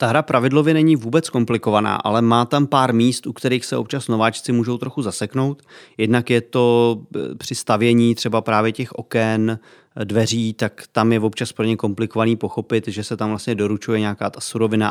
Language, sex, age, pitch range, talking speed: Czech, male, 30-49, 110-125 Hz, 180 wpm